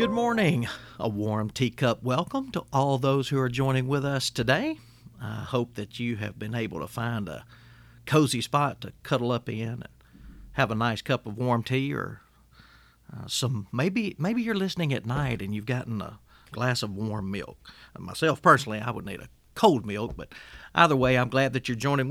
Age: 40-59